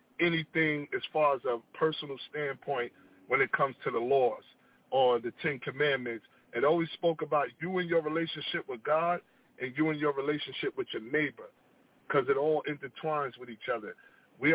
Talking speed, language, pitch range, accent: 175 wpm, English, 130-160 Hz, American